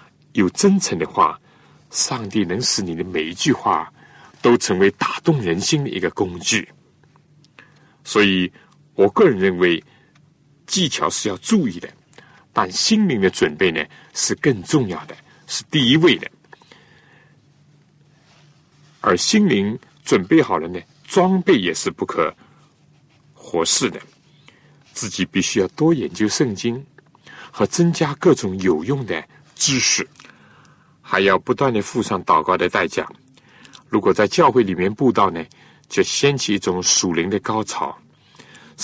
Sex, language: male, Chinese